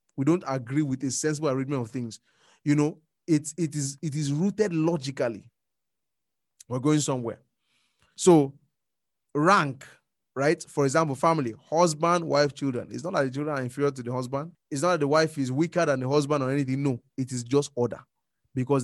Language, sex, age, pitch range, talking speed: English, male, 20-39, 130-155 Hz, 190 wpm